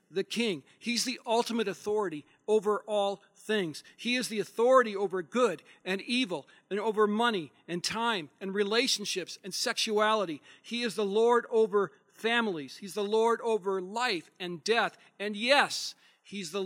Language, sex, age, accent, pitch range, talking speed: English, male, 40-59, American, 180-230 Hz, 155 wpm